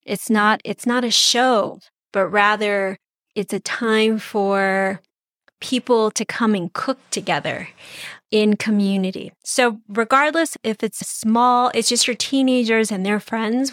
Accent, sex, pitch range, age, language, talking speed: American, female, 205-245 Hz, 30-49, English, 140 wpm